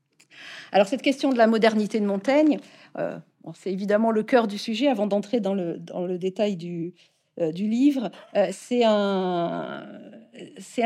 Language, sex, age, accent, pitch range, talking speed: French, female, 50-69, French, 195-240 Hz, 165 wpm